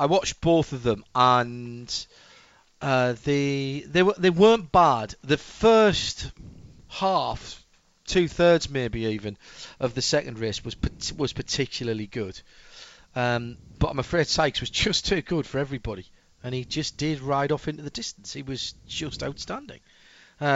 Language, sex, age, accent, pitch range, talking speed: English, male, 40-59, British, 120-150 Hz, 150 wpm